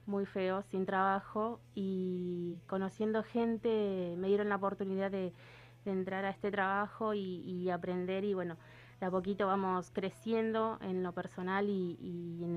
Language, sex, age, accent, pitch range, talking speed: Spanish, female, 20-39, Argentinian, 175-200 Hz, 160 wpm